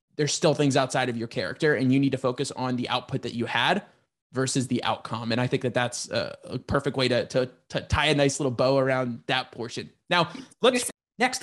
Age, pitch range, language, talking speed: 20-39, 140-200 Hz, English, 225 wpm